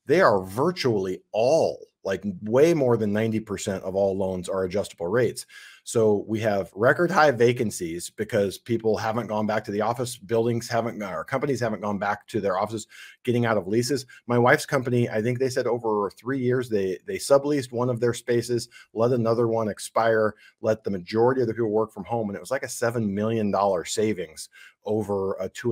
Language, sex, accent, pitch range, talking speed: English, male, American, 105-125 Hz, 200 wpm